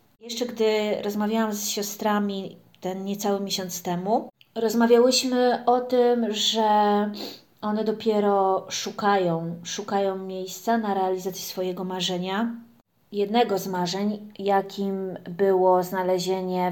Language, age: Polish, 20-39